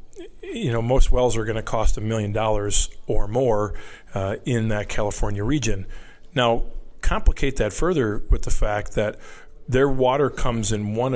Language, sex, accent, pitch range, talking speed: English, male, American, 105-135 Hz, 165 wpm